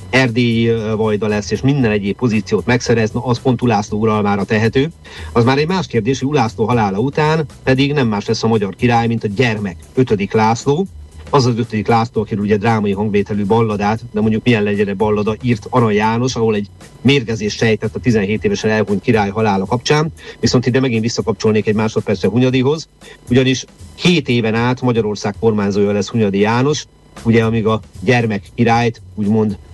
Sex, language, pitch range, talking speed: male, Hungarian, 100-120 Hz, 170 wpm